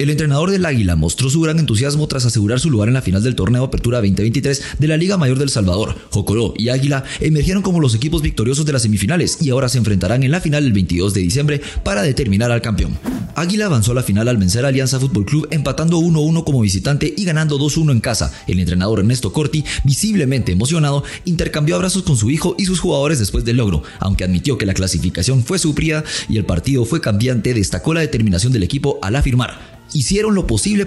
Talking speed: 215 wpm